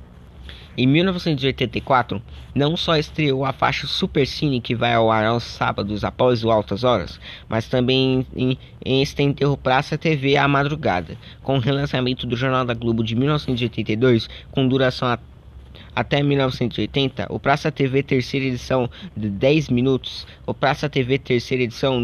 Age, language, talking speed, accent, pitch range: 20-39, Portuguese, 150 wpm, Brazilian, 120-140 Hz